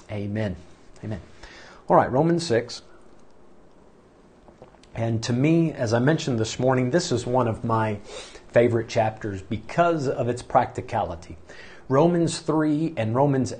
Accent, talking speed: American, 130 wpm